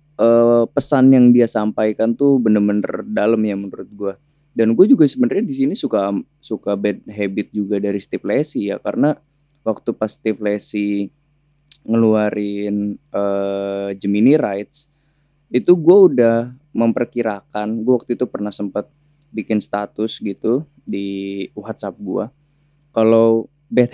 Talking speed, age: 130 wpm, 20-39